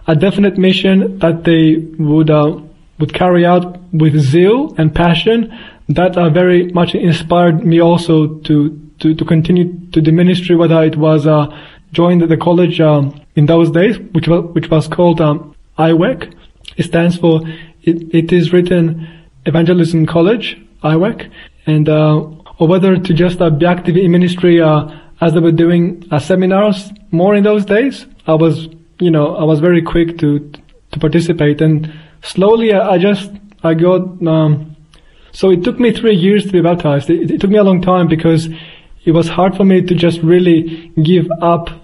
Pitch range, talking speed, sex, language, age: 160-180 Hz, 180 wpm, male, English, 20-39